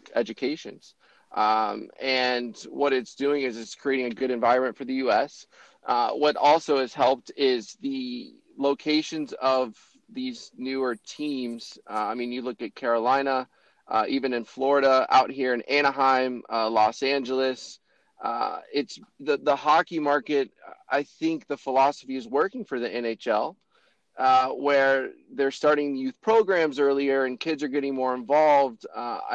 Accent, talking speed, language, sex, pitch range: American, 150 wpm, English, male, 125-150 Hz